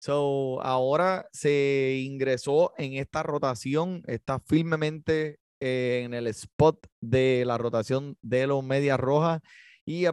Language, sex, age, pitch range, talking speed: Spanish, male, 20-39, 130-155 Hz, 125 wpm